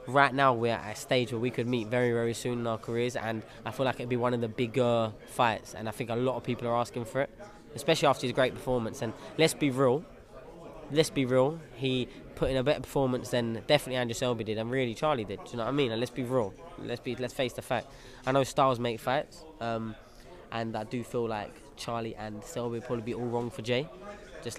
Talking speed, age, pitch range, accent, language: 250 wpm, 20-39, 115-135 Hz, British, English